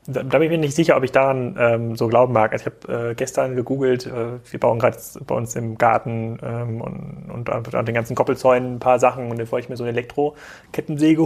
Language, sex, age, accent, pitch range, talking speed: German, male, 30-49, German, 115-145 Hz, 250 wpm